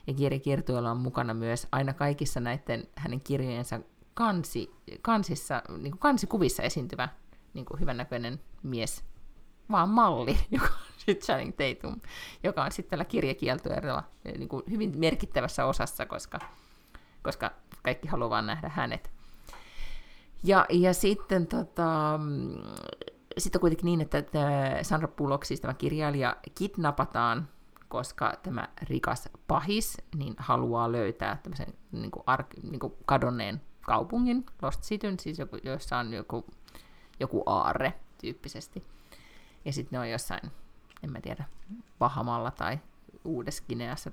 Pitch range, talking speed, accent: 125-190 Hz, 120 wpm, native